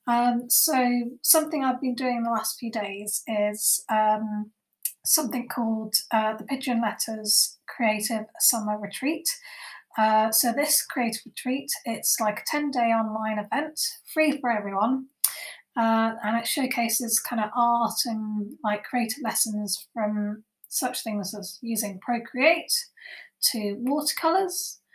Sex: female